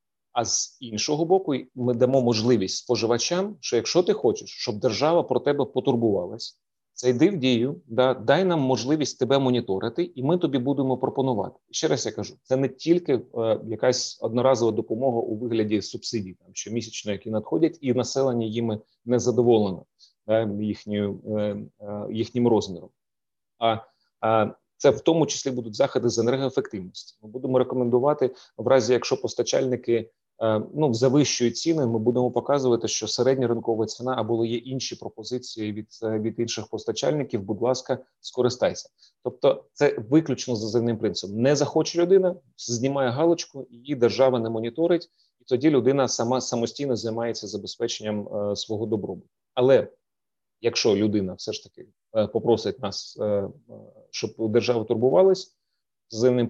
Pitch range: 110-135 Hz